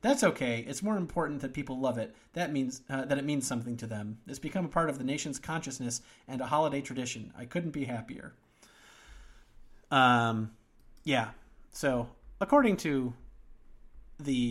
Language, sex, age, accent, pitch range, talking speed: English, male, 30-49, American, 120-155 Hz, 165 wpm